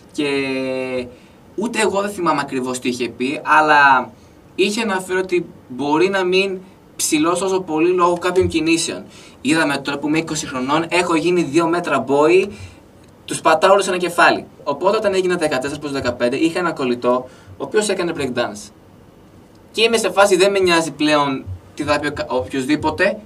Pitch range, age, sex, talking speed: 125-170 Hz, 20-39, male, 160 wpm